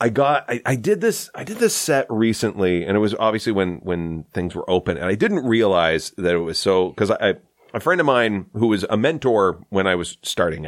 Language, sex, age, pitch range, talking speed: English, male, 30-49, 80-110 Hz, 240 wpm